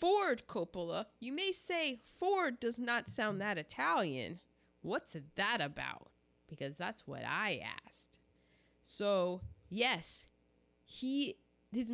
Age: 20-39